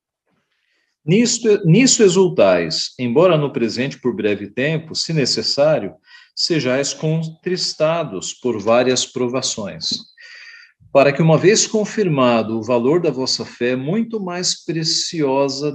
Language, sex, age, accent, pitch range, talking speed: Portuguese, male, 50-69, Brazilian, 120-165 Hz, 105 wpm